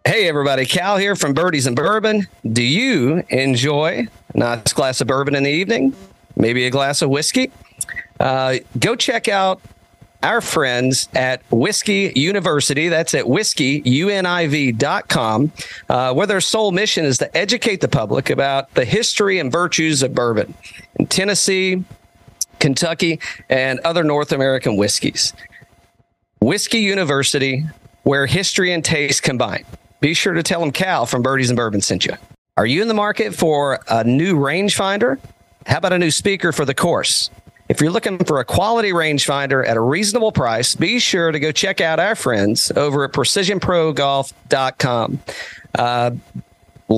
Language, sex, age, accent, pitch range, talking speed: English, male, 40-59, American, 130-185 Hz, 150 wpm